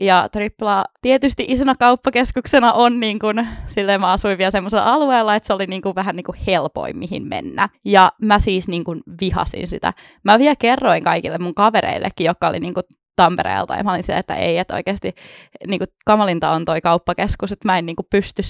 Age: 20-39